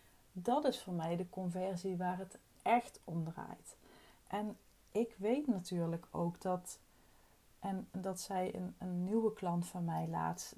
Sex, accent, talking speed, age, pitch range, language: female, Dutch, 155 wpm, 30-49, 165-190 Hz, Dutch